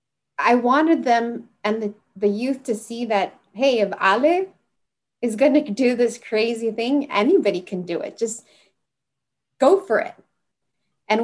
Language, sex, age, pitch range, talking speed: English, female, 20-39, 180-225 Hz, 155 wpm